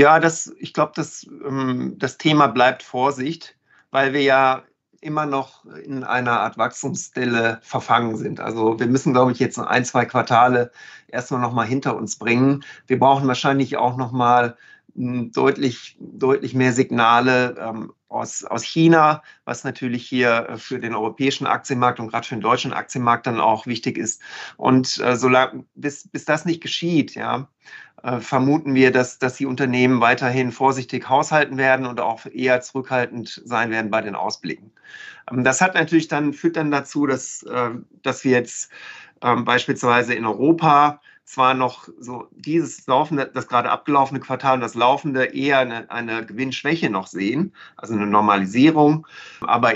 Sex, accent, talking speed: male, German, 165 wpm